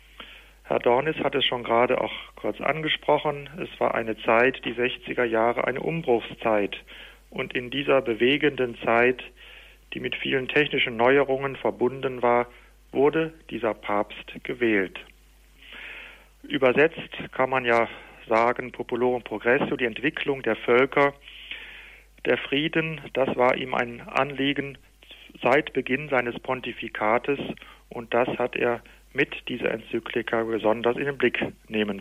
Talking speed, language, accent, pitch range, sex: 125 wpm, German, German, 115-140 Hz, male